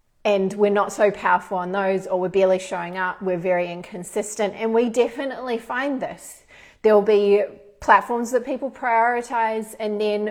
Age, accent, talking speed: 30-49, Australian, 165 wpm